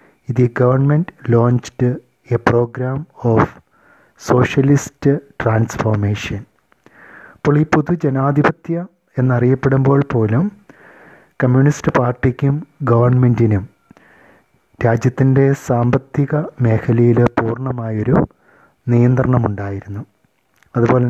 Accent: Indian